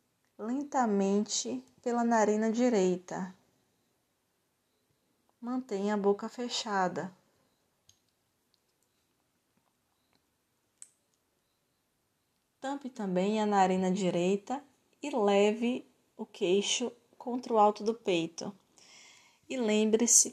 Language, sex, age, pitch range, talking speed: Portuguese, female, 20-39, 185-230 Hz, 70 wpm